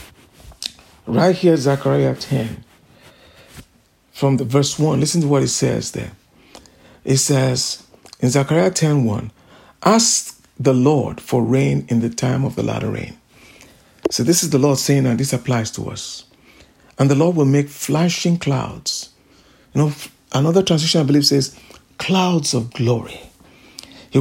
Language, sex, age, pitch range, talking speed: English, male, 60-79, 135-205 Hz, 150 wpm